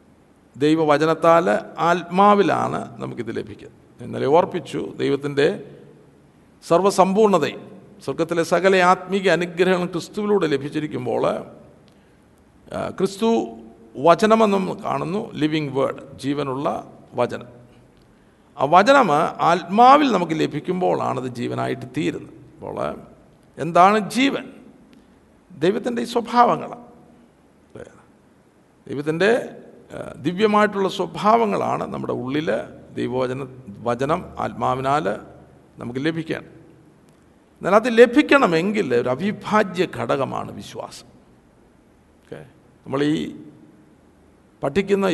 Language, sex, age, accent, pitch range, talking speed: Malayalam, male, 50-69, native, 140-205 Hz, 70 wpm